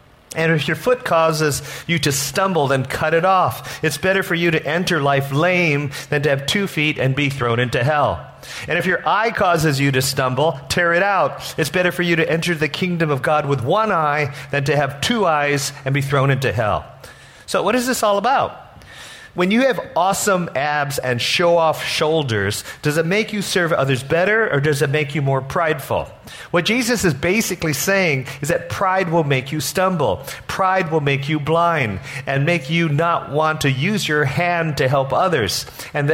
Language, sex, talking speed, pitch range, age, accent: English, male, 205 wpm, 135-175 Hz, 40-59, American